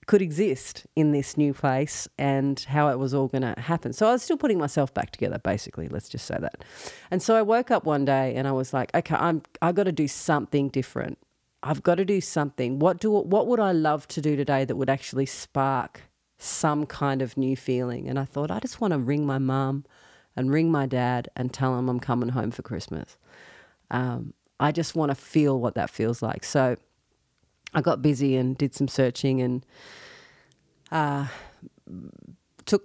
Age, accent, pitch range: 40-59, Australian, 130-160 Hz